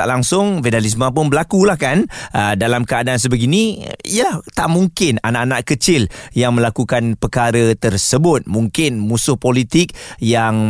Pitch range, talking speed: 115-140 Hz, 135 wpm